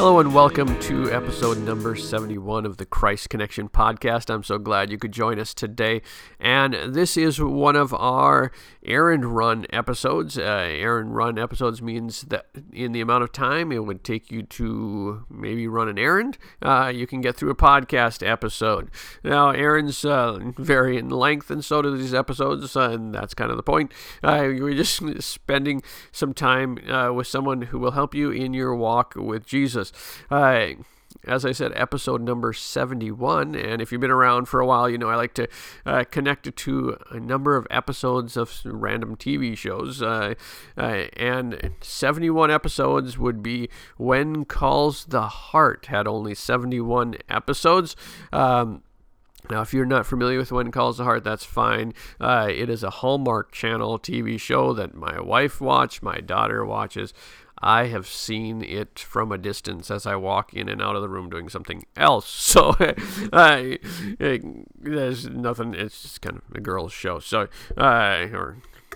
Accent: American